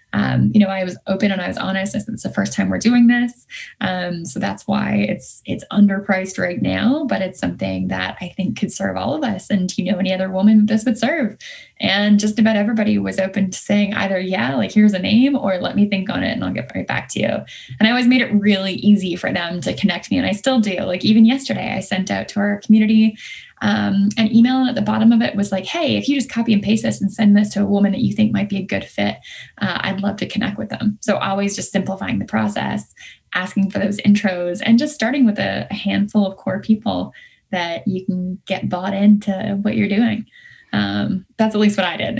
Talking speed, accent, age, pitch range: 250 wpm, American, 10-29, 190-220 Hz